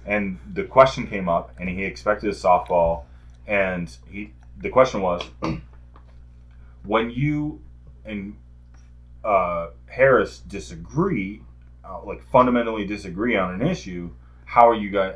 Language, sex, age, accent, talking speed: English, male, 20-39, American, 125 wpm